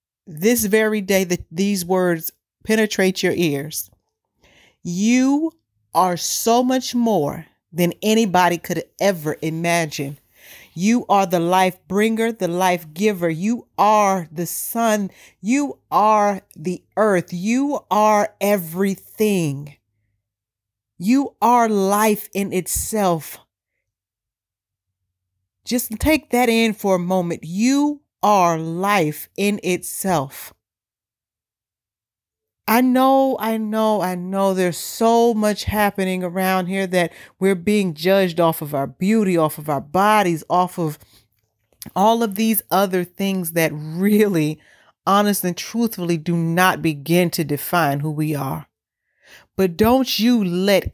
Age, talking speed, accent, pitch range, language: 40-59, 120 wpm, American, 160-215 Hz, English